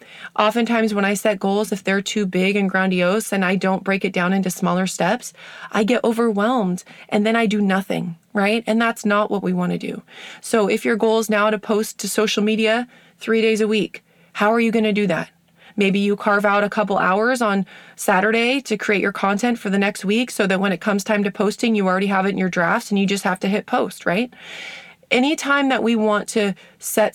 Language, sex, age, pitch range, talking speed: English, female, 20-39, 195-230 Hz, 230 wpm